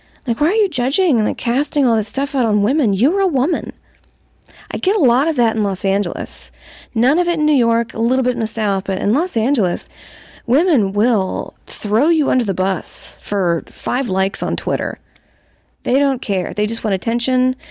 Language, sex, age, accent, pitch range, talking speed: English, female, 30-49, American, 205-275 Hz, 205 wpm